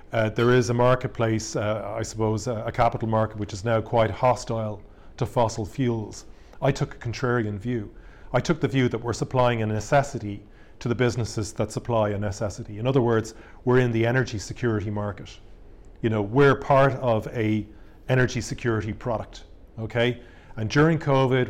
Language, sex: English, male